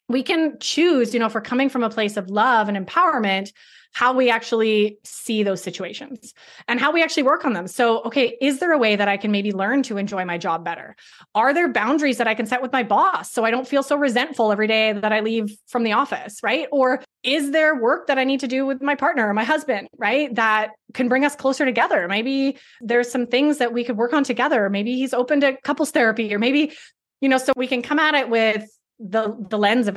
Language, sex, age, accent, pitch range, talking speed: English, female, 20-39, American, 205-260 Hz, 245 wpm